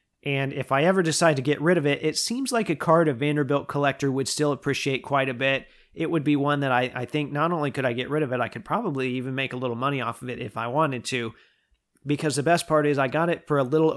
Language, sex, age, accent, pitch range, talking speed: English, male, 40-59, American, 130-160 Hz, 285 wpm